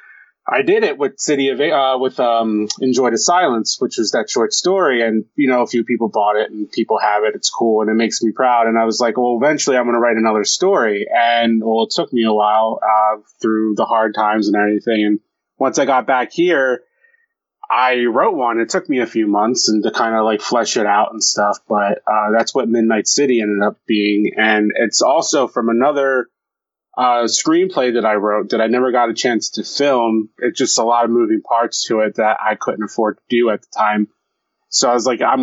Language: English